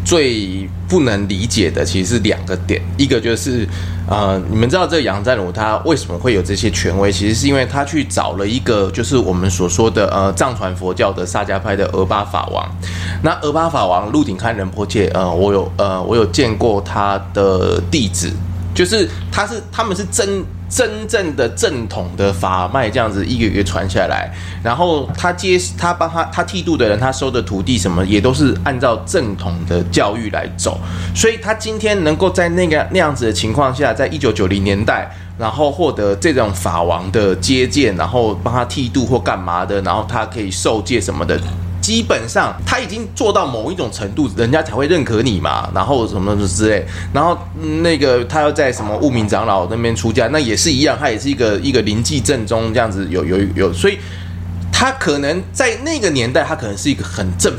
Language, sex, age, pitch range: Chinese, male, 20-39, 90-115 Hz